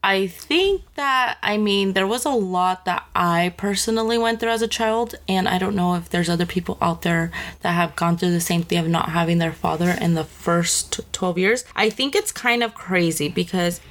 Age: 20-39